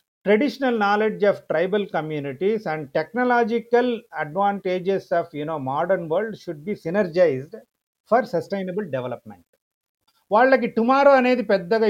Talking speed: 115 wpm